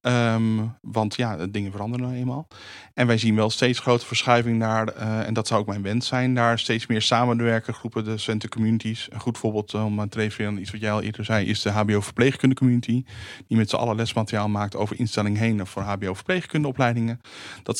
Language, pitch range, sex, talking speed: Dutch, 105-120 Hz, male, 200 wpm